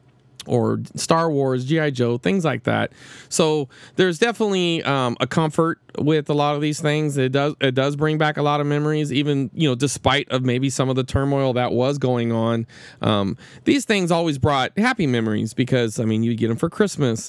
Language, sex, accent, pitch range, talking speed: English, male, American, 120-155 Hz, 205 wpm